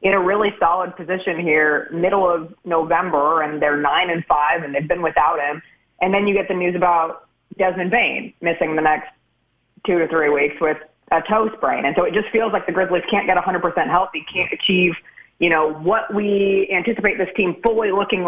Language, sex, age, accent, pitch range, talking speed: English, female, 30-49, American, 155-185 Hz, 205 wpm